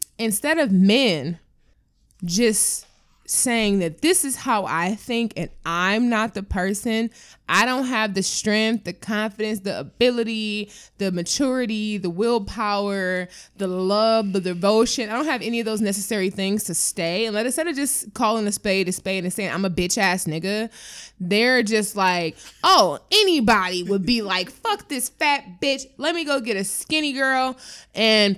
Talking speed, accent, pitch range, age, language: 165 wpm, American, 200-270 Hz, 20-39, English